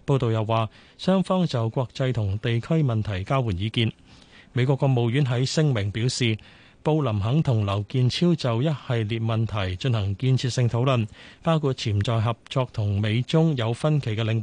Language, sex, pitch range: Chinese, male, 110-140 Hz